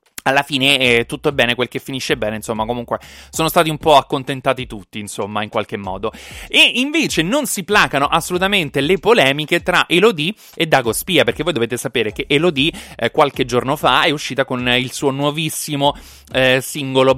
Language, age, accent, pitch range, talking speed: Italian, 20-39, native, 120-155 Hz, 185 wpm